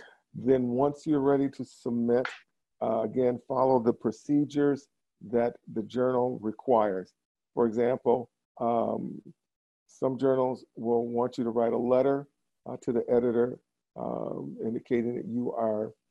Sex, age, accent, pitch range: male, 50-69, American, 115-130 Hz